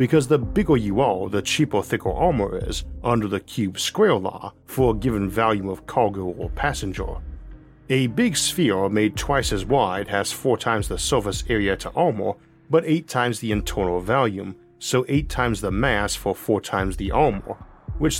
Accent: American